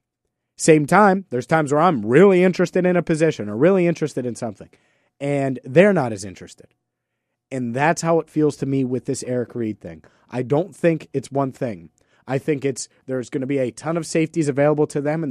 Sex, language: male, English